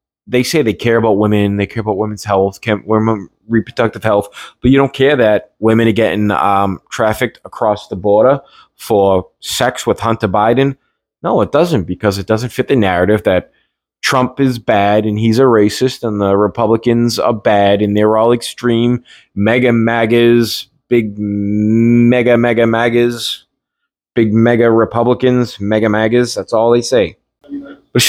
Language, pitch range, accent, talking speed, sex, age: English, 110-135 Hz, American, 155 wpm, male, 20-39